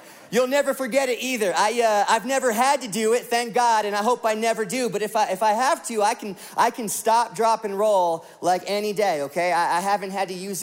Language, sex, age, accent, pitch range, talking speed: English, male, 30-49, American, 185-230 Hz, 260 wpm